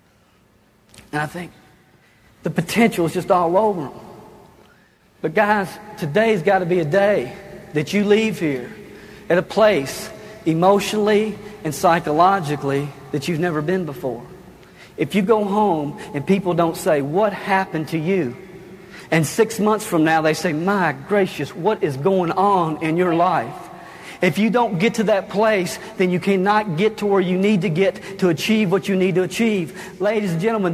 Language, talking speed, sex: English, 170 wpm, male